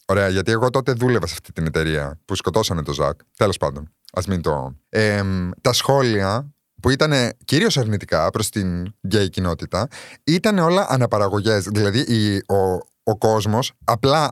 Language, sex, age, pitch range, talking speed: Greek, male, 30-49, 95-135 Hz, 150 wpm